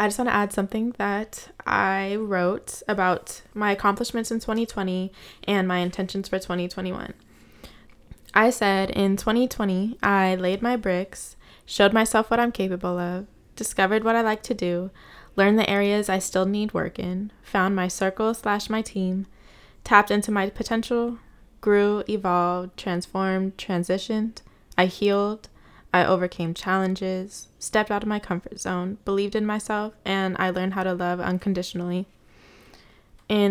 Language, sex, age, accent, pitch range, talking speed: English, female, 20-39, American, 185-215 Hz, 150 wpm